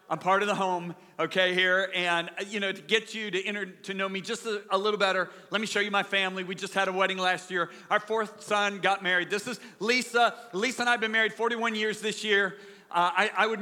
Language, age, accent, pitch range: English, 40-59, American, 190-220 Hz